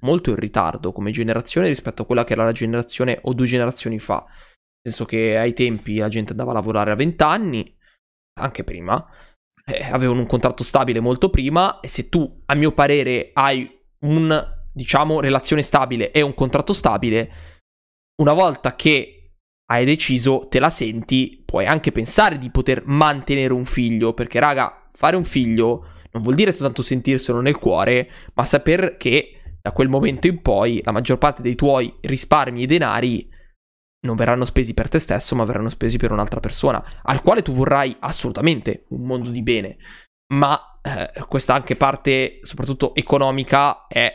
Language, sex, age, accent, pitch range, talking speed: Italian, male, 20-39, native, 115-140 Hz, 170 wpm